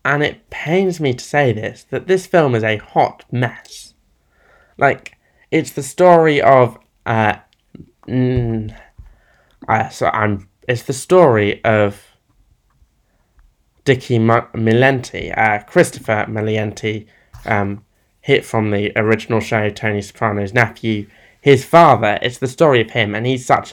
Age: 20-39